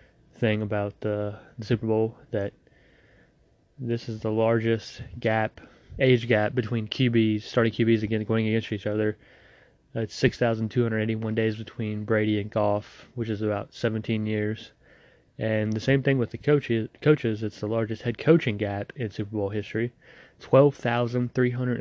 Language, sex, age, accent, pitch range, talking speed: English, male, 20-39, American, 105-120 Hz, 170 wpm